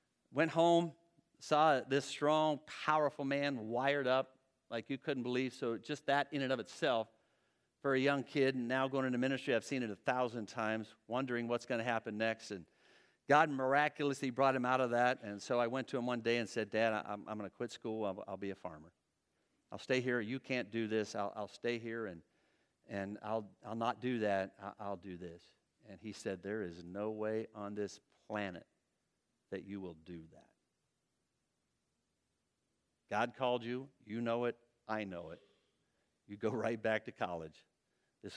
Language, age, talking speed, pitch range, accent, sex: English, 50-69, 190 wpm, 100-130 Hz, American, male